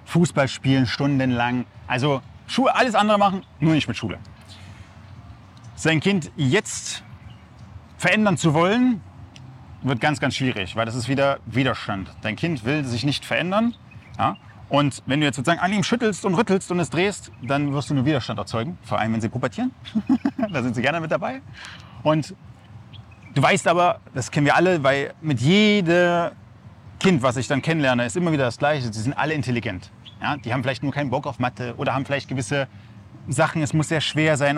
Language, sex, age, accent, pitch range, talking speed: German, male, 30-49, German, 120-160 Hz, 185 wpm